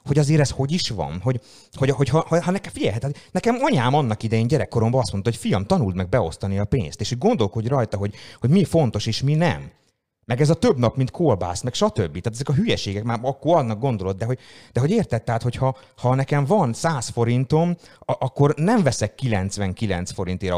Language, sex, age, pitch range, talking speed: Hungarian, male, 30-49, 95-130 Hz, 215 wpm